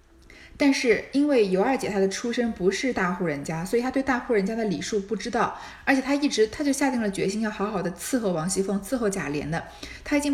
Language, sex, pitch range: Chinese, female, 180-255 Hz